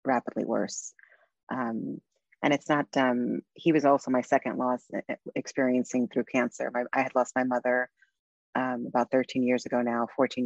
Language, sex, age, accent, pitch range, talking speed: English, female, 30-49, American, 120-130 Hz, 160 wpm